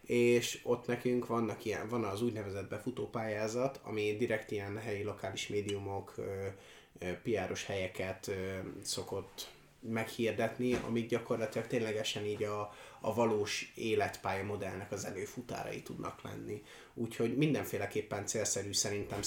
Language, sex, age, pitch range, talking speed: Hungarian, male, 30-49, 100-120 Hz, 110 wpm